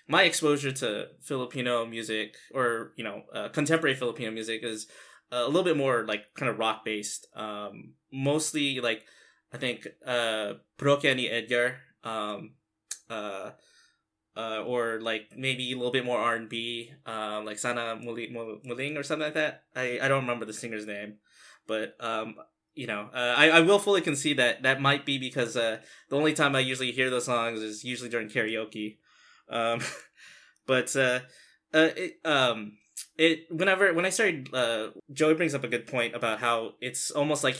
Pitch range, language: 115-145 Hz, English